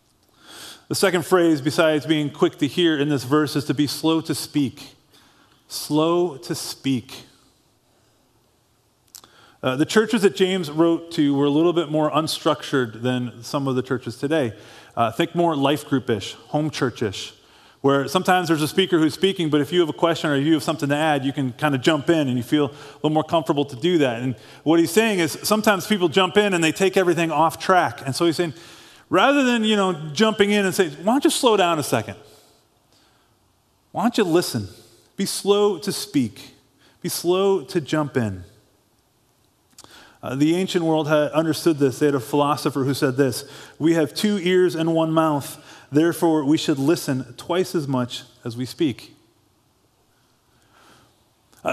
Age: 30-49